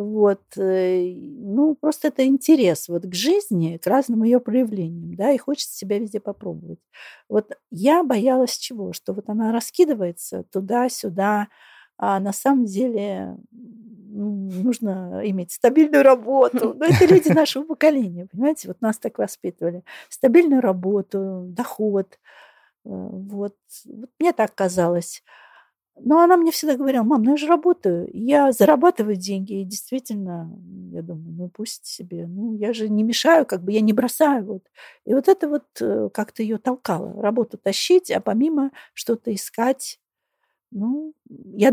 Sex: female